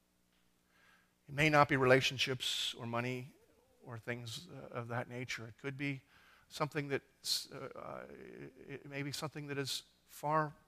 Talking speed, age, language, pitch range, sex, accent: 135 wpm, 50-69, English, 115-145 Hz, male, American